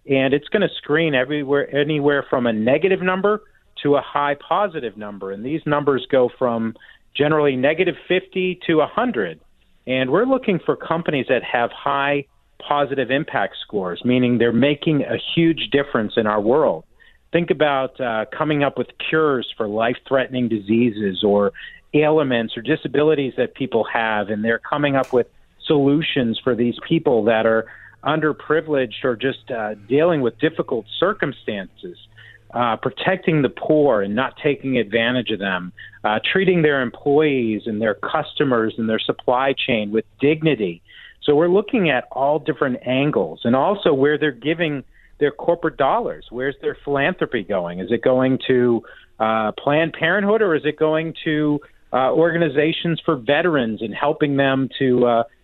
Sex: male